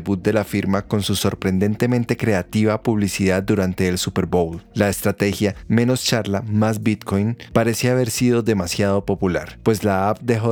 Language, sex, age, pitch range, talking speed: Spanish, male, 30-49, 95-115 Hz, 160 wpm